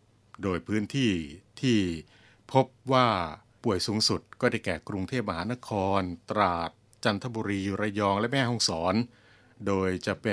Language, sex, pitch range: Thai, male, 95-120 Hz